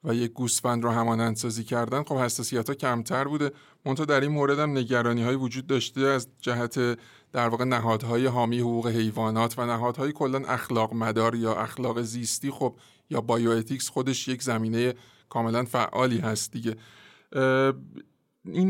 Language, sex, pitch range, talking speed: Persian, male, 115-140 Hz, 155 wpm